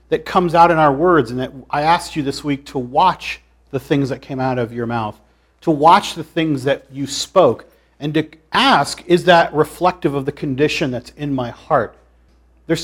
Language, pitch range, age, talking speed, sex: English, 120-160 Hz, 40-59, 205 wpm, male